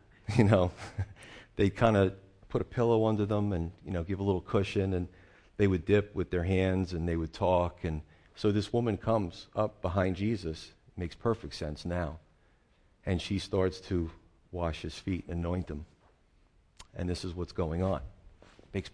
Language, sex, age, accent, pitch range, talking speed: English, male, 40-59, American, 85-110 Hz, 180 wpm